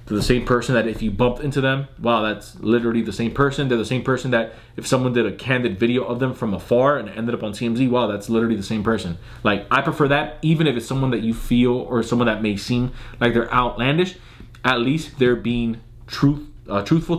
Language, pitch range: English, 110-130 Hz